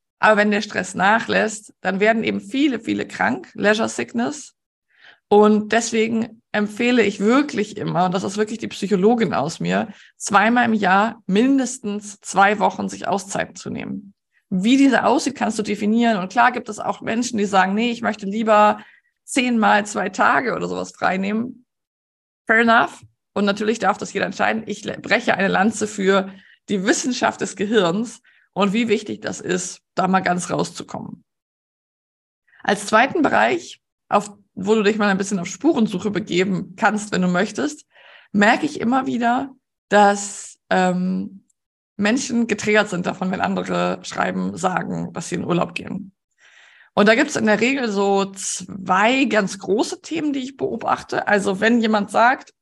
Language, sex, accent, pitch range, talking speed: German, female, German, 195-230 Hz, 165 wpm